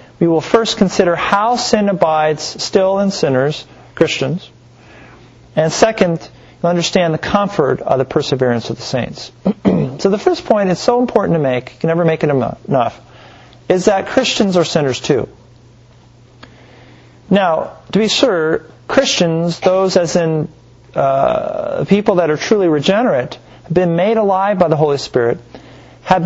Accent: American